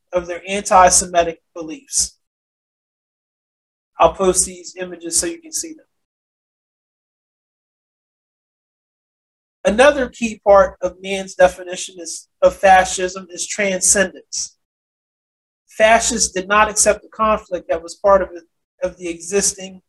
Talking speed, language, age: 115 wpm, English, 30-49